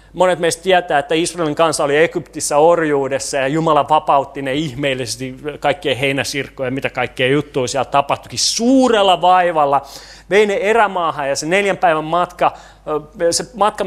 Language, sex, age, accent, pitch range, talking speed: Finnish, male, 30-49, native, 140-195 Hz, 145 wpm